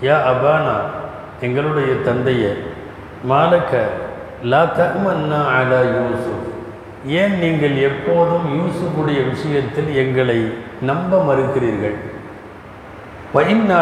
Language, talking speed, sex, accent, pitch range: Tamil, 80 wpm, male, native, 120-155 Hz